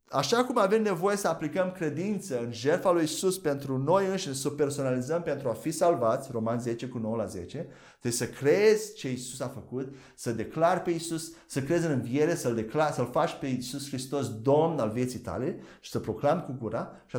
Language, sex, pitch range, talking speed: Romanian, male, 125-175 Hz, 205 wpm